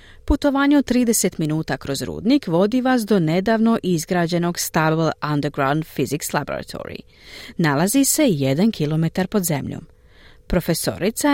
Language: Croatian